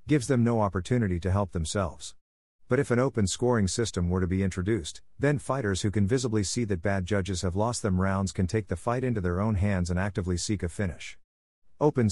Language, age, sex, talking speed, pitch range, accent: English, 50-69, male, 220 wpm, 90-110 Hz, American